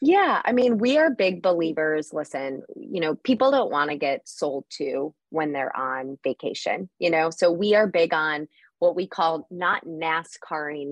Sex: female